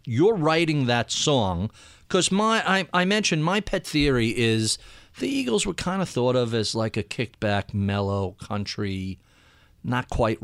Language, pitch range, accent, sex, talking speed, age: English, 110-155 Hz, American, male, 155 wpm, 40-59